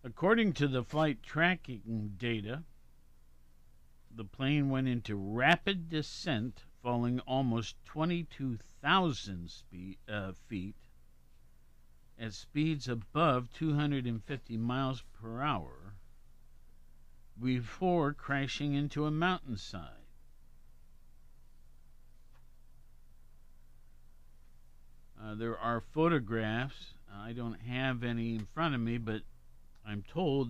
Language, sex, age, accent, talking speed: English, male, 50-69, American, 85 wpm